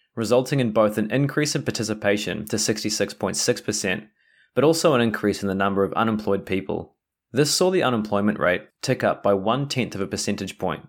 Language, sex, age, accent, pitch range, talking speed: English, male, 20-39, Australian, 100-125 Hz, 175 wpm